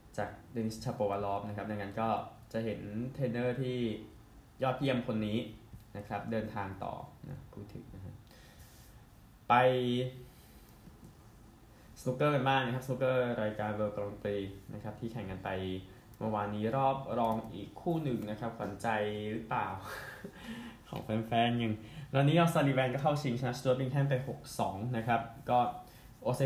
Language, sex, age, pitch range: Thai, male, 20-39, 105-130 Hz